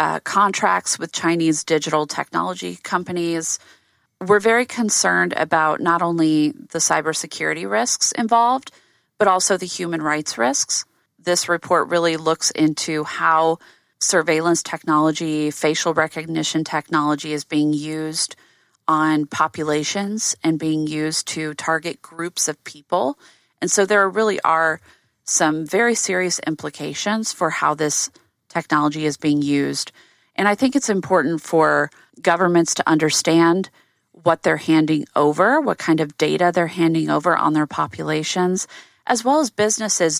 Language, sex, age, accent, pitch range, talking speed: English, female, 30-49, American, 155-200 Hz, 135 wpm